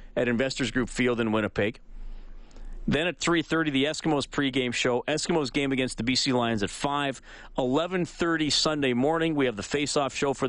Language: English